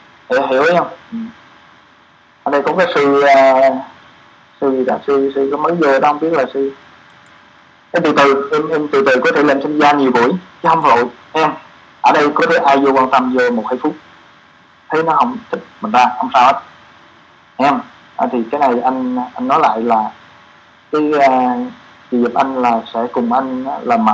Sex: male